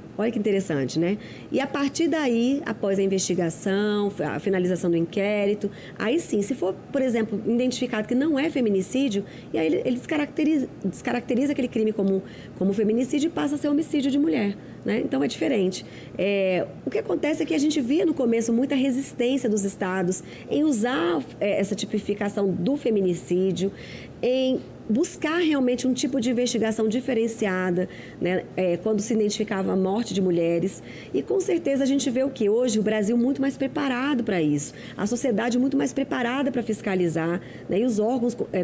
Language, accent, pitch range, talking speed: Portuguese, Brazilian, 195-265 Hz, 180 wpm